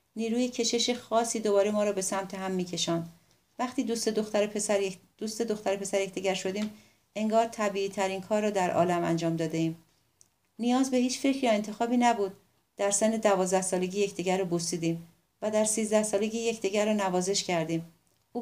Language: Persian